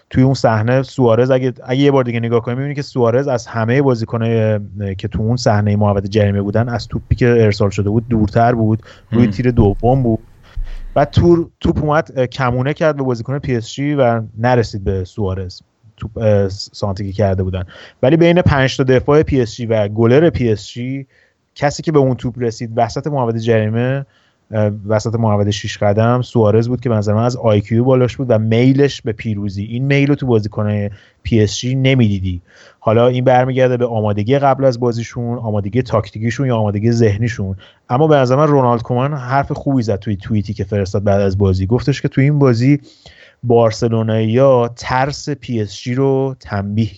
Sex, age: male, 30-49